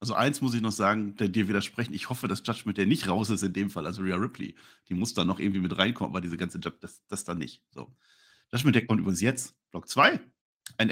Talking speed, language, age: 270 wpm, German, 50-69